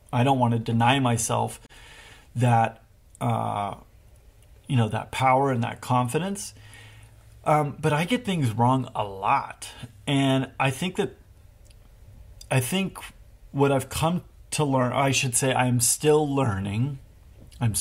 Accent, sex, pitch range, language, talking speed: American, male, 110-135 Hz, English, 135 wpm